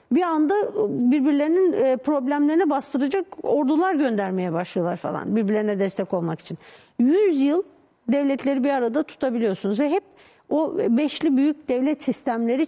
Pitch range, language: 220-300 Hz, Turkish